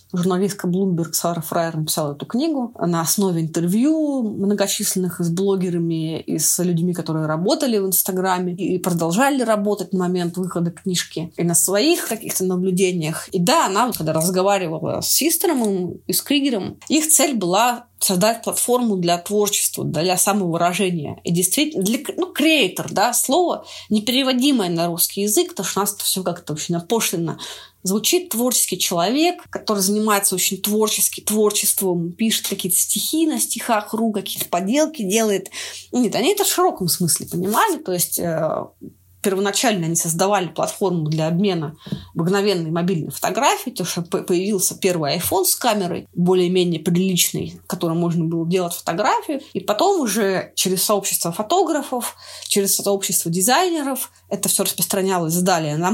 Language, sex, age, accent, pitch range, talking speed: Russian, female, 20-39, native, 175-230 Hz, 145 wpm